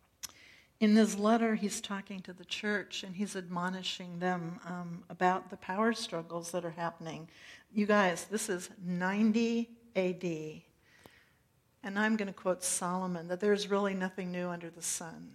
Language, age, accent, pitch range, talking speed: English, 60-79, American, 180-220 Hz, 155 wpm